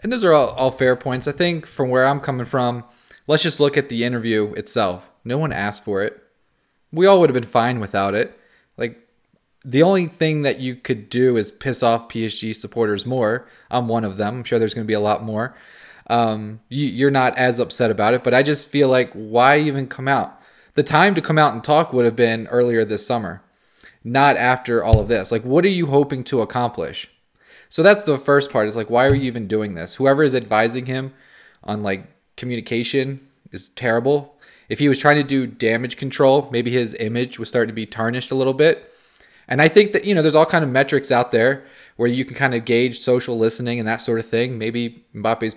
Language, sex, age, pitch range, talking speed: English, male, 20-39, 115-140 Hz, 225 wpm